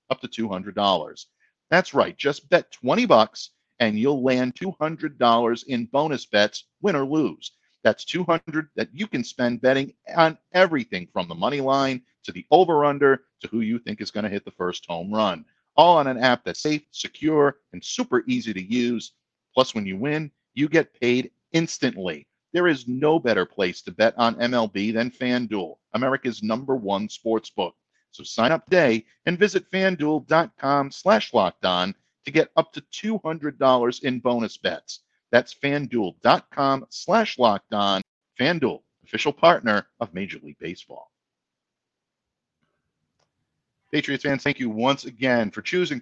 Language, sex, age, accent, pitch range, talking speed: English, male, 50-69, American, 115-155 Hz, 155 wpm